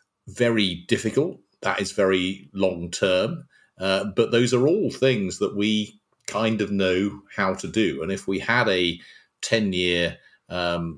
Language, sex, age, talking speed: English, male, 40-59, 160 wpm